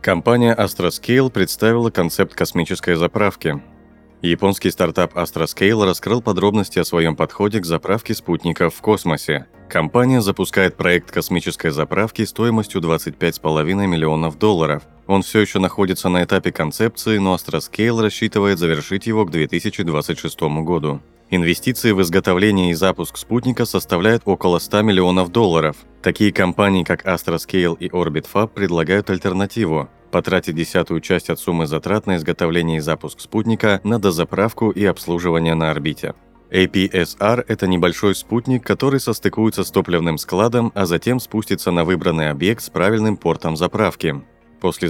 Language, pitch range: Russian, 85-105 Hz